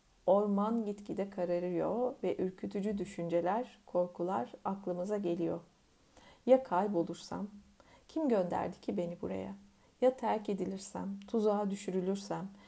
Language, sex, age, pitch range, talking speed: Turkish, female, 40-59, 180-235 Hz, 100 wpm